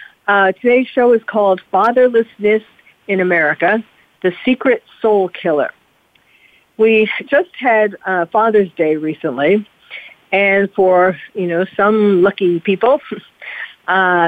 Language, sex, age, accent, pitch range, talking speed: English, female, 50-69, American, 175-220 Hz, 115 wpm